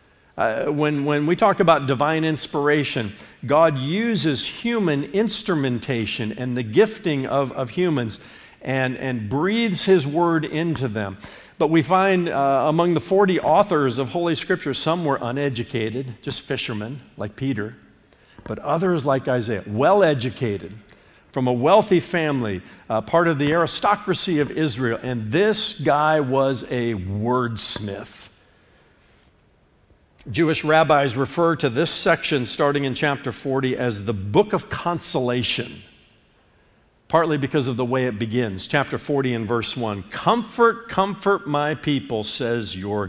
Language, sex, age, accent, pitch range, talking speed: English, male, 50-69, American, 125-180 Hz, 135 wpm